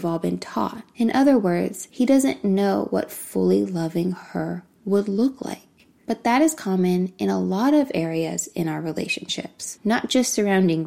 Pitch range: 170-215 Hz